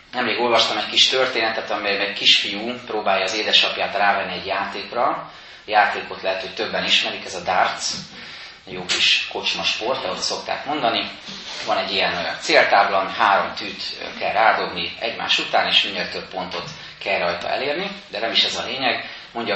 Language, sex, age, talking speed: Hungarian, male, 30-49, 165 wpm